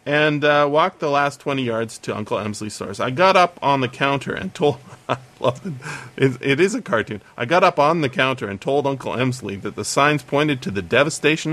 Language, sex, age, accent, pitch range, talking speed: English, male, 40-59, American, 115-145 Hz, 215 wpm